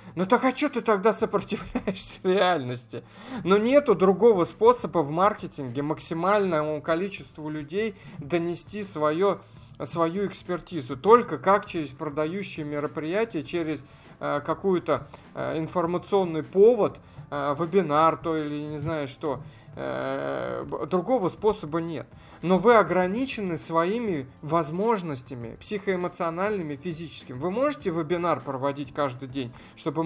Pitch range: 150-190 Hz